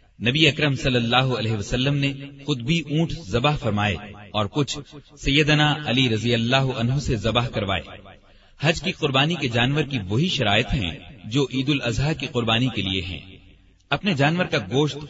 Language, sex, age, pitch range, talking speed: Urdu, male, 40-59, 105-150 Hz, 170 wpm